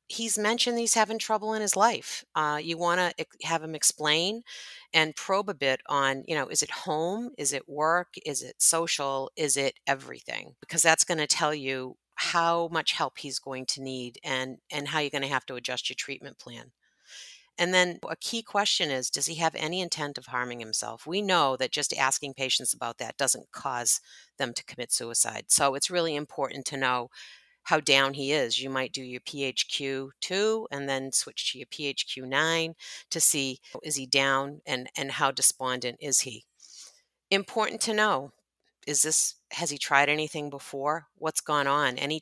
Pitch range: 135-175 Hz